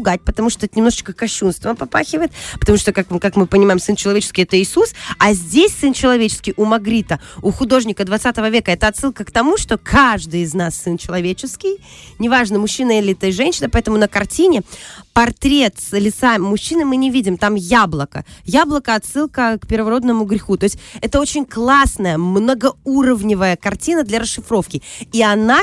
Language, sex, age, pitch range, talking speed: Russian, female, 20-39, 195-265 Hz, 160 wpm